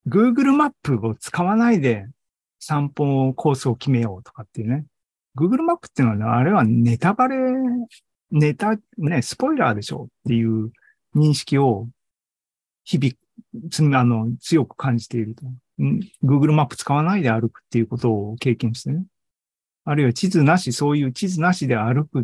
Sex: male